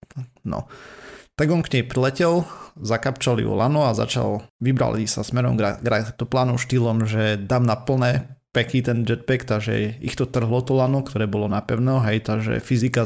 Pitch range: 110-130 Hz